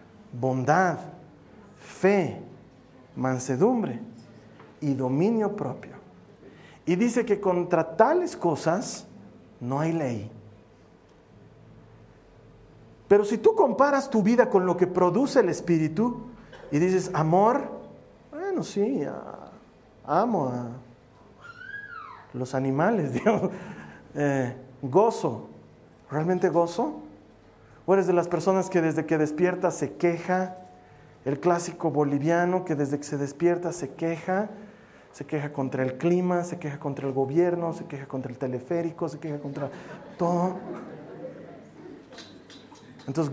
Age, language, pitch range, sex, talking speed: 40-59, Spanish, 140-190 Hz, male, 115 wpm